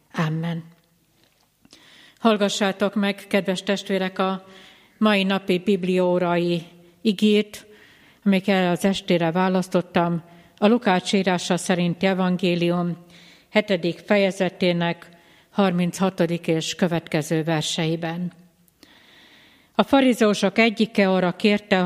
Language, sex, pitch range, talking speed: Hungarian, female, 170-210 Hz, 80 wpm